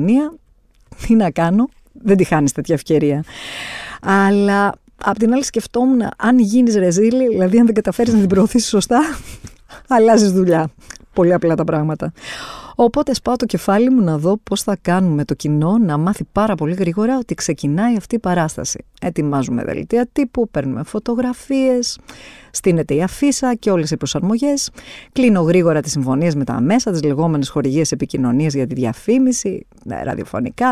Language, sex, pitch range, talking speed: Greek, female, 150-225 Hz, 155 wpm